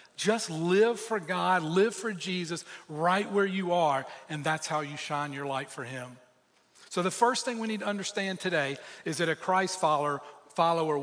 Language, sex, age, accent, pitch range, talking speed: English, male, 40-59, American, 155-200 Hz, 185 wpm